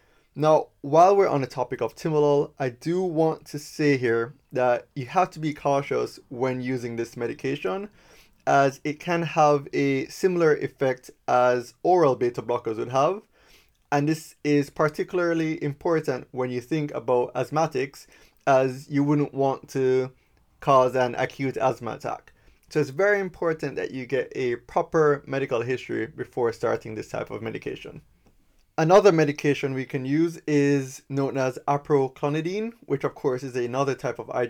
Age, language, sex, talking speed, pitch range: 20-39, English, male, 160 wpm, 130-160 Hz